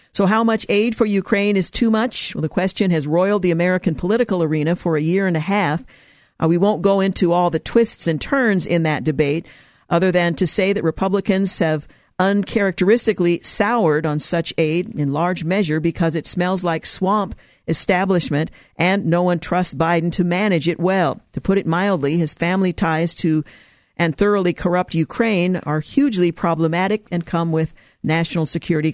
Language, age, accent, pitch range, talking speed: English, 50-69, American, 160-195 Hz, 180 wpm